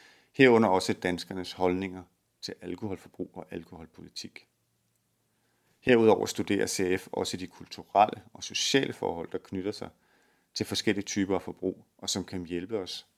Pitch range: 90-105 Hz